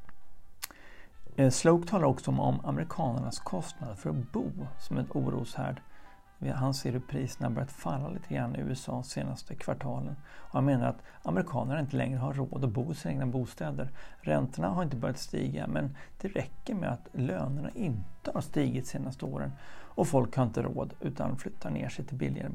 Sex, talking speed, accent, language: male, 180 wpm, Swedish, English